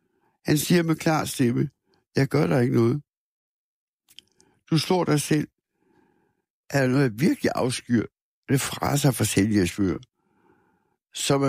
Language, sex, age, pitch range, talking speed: Danish, male, 60-79, 120-160 Hz, 140 wpm